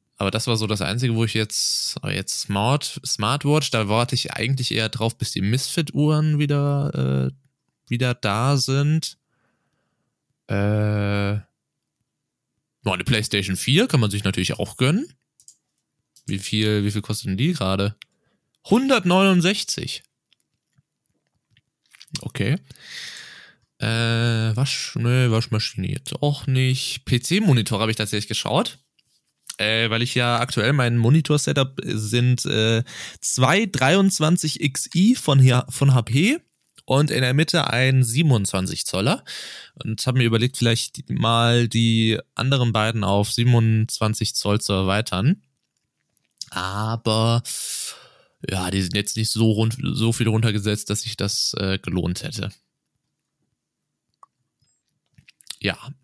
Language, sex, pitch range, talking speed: German, male, 110-140 Hz, 120 wpm